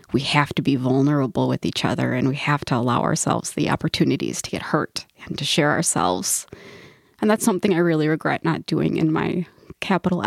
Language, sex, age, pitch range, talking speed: English, female, 20-39, 155-190 Hz, 200 wpm